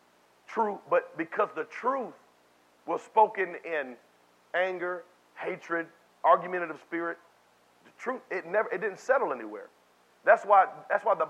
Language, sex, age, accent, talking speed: English, male, 40-59, American, 135 wpm